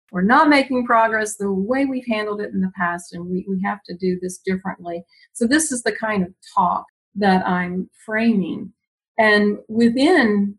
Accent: American